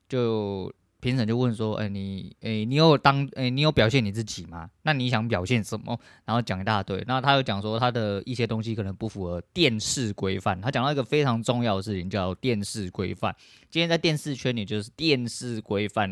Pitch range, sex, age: 100-130 Hz, male, 20-39